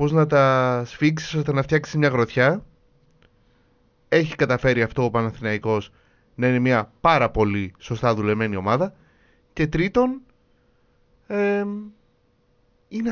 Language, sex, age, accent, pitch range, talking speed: Greek, male, 30-49, native, 120-170 Hz, 115 wpm